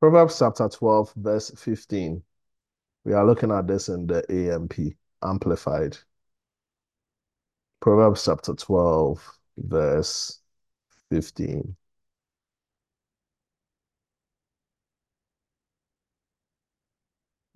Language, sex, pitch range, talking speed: English, male, 85-110 Hz, 60 wpm